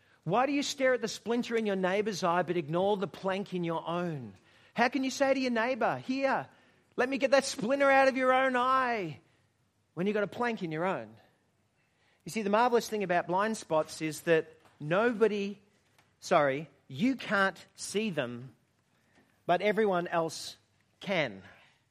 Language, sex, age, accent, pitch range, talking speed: English, male, 40-59, Australian, 155-225 Hz, 175 wpm